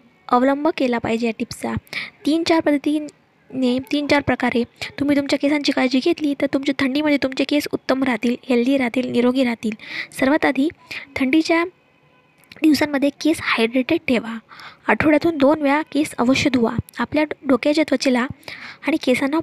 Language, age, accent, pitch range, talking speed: Hindi, 20-39, native, 255-300 Hz, 110 wpm